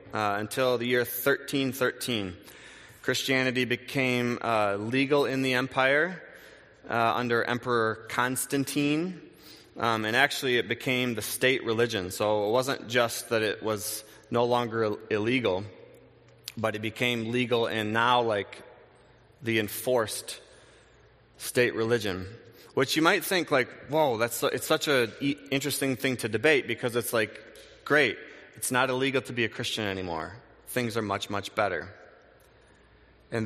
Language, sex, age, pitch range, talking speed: English, male, 30-49, 110-125 Hz, 135 wpm